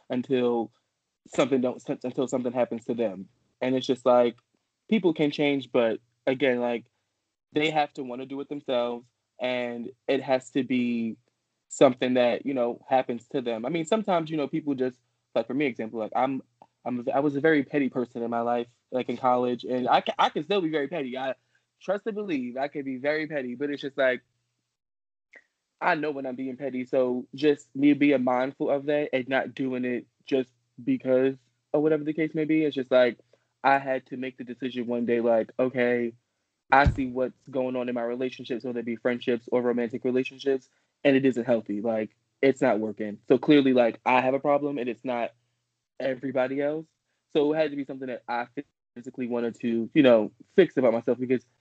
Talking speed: 205 wpm